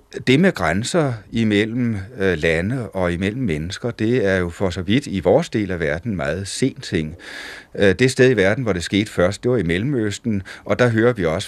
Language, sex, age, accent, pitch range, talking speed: Danish, male, 30-49, native, 90-115 Hz, 205 wpm